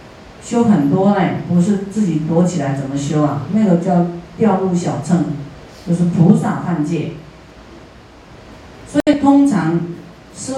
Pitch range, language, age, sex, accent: 160-200 Hz, Chinese, 40-59, female, native